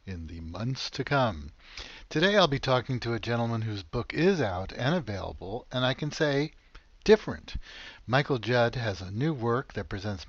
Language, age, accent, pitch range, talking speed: English, 60-79, American, 100-130 Hz, 180 wpm